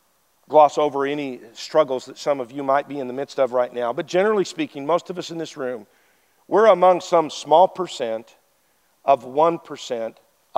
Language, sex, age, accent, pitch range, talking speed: English, male, 50-69, American, 125-165 Hz, 180 wpm